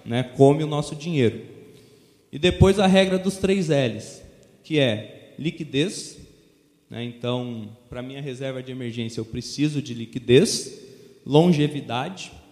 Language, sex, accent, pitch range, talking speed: Portuguese, male, Brazilian, 125-155 Hz, 130 wpm